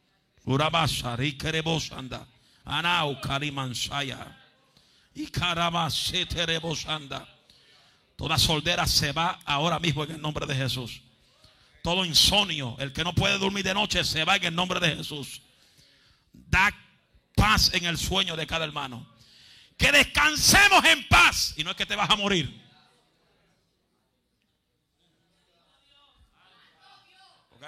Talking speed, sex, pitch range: 105 wpm, male, 120-165 Hz